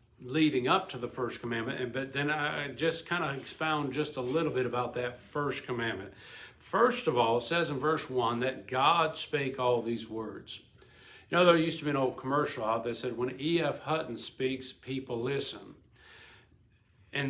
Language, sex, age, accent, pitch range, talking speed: English, male, 50-69, American, 125-150 Hz, 195 wpm